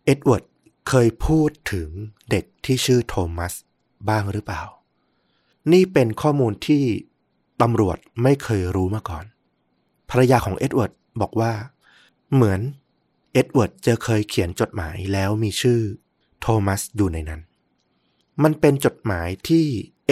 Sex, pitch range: male, 100-130 Hz